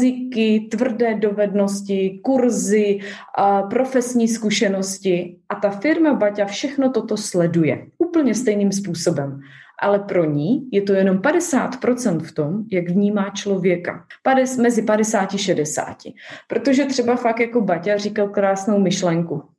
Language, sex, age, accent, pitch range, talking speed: Czech, female, 20-39, native, 185-225 Hz, 125 wpm